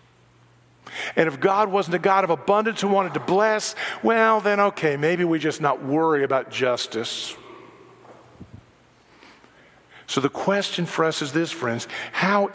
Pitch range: 140-185 Hz